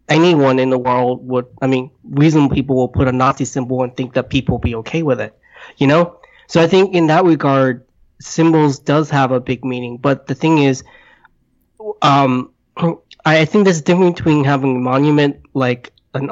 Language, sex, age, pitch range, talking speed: English, male, 20-39, 130-155 Hz, 195 wpm